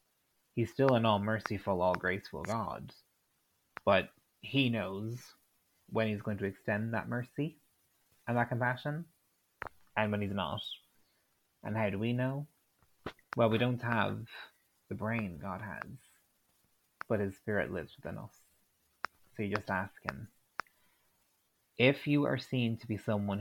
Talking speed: 140 wpm